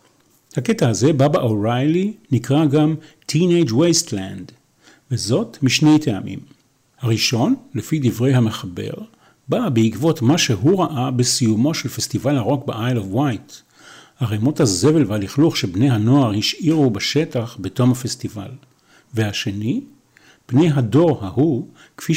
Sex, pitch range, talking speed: male, 115-150 Hz, 110 wpm